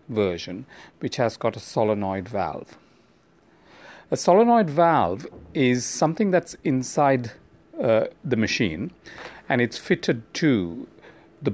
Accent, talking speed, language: Indian, 115 wpm, English